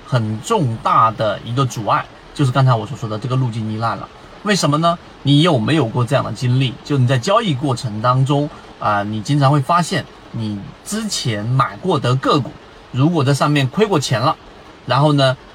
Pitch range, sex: 125-165 Hz, male